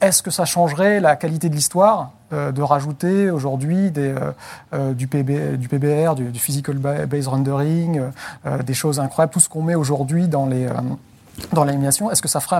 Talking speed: 160 wpm